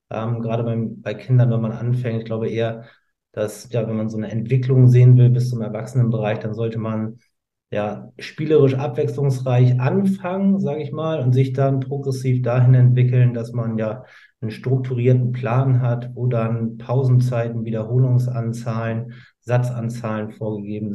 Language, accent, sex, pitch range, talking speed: German, German, male, 115-130 Hz, 150 wpm